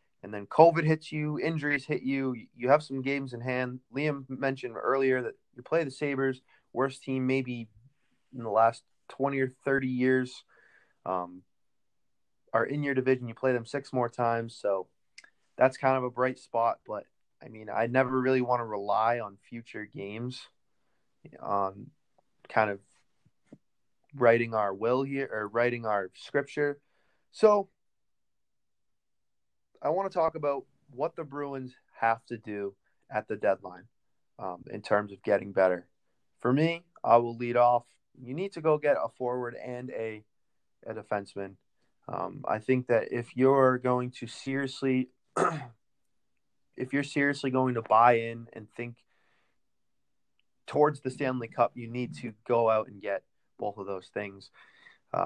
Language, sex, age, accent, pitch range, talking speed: English, male, 20-39, American, 115-135 Hz, 155 wpm